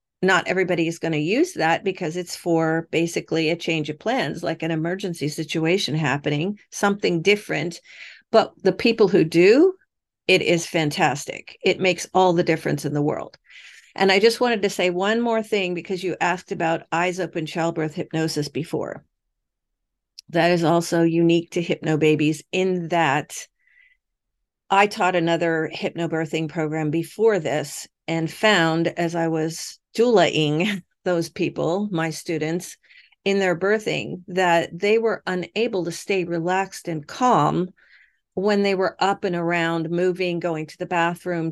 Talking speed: 150 wpm